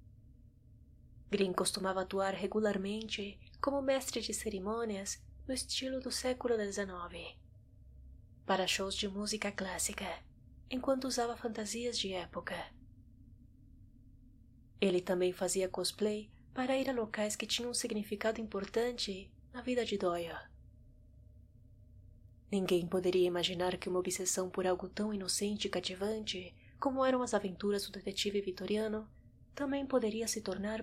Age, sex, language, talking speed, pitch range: 20-39, female, Portuguese, 125 wpm, 180-220 Hz